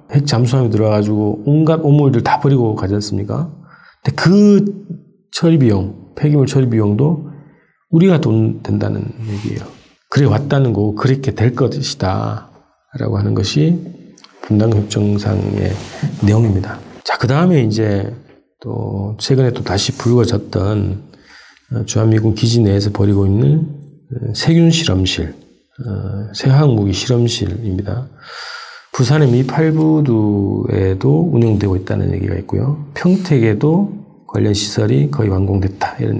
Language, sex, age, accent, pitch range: Korean, male, 40-59, native, 105-145 Hz